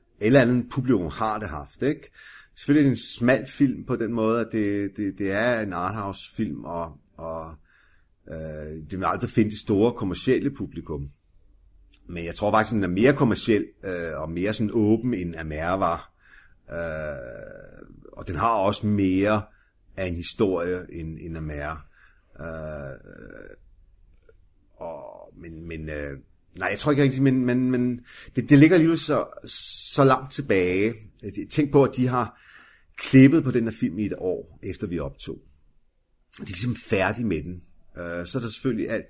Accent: native